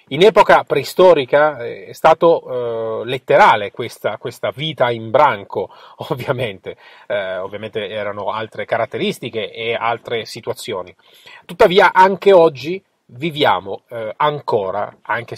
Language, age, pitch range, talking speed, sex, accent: Italian, 30-49, 120-195 Hz, 110 wpm, male, native